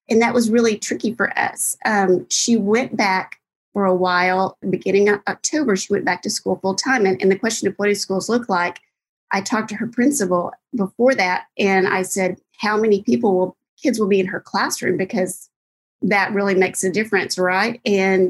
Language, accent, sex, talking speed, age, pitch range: English, American, female, 205 wpm, 40-59, 185-210 Hz